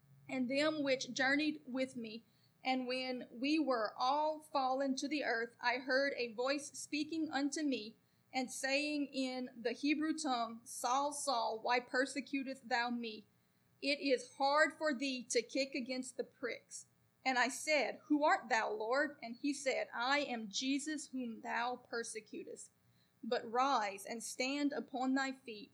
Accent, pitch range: American, 245-290 Hz